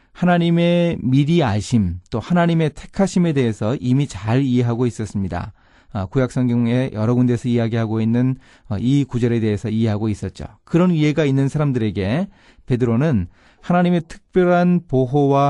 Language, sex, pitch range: Korean, male, 105-145 Hz